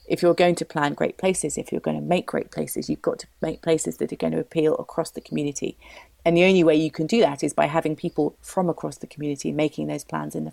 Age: 30-49